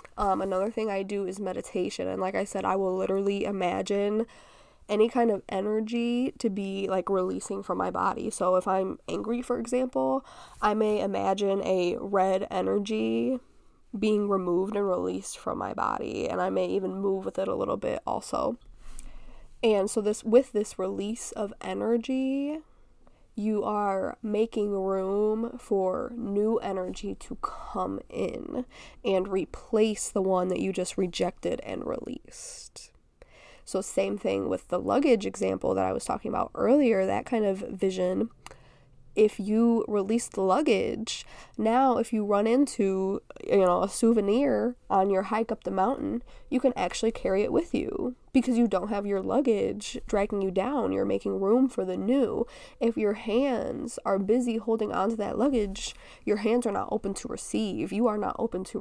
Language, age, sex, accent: English, 20-39, female, American